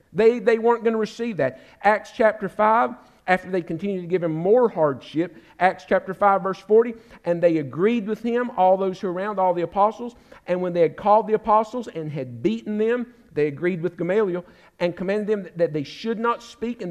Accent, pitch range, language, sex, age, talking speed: American, 150-225 Hz, English, male, 50-69, 215 wpm